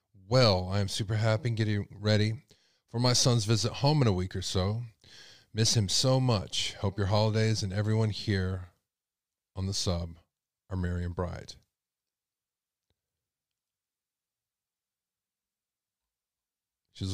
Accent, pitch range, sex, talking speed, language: American, 95-115 Hz, male, 125 wpm, English